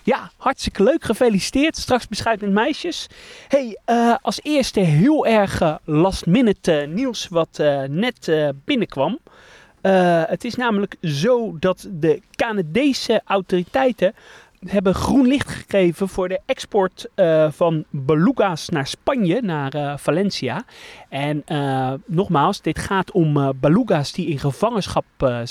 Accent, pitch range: Dutch, 145-215 Hz